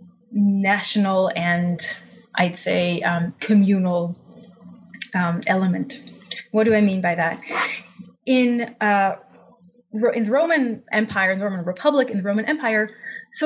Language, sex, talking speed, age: English, female, 130 wpm, 20-39